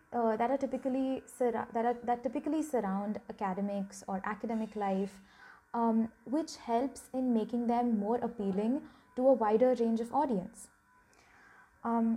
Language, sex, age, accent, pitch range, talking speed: English, female, 20-39, Indian, 215-265 Hz, 145 wpm